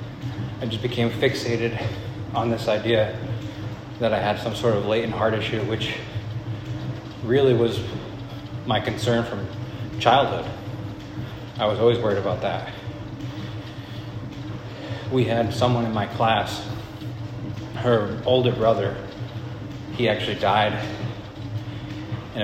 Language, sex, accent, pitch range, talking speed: English, male, American, 105-120 Hz, 110 wpm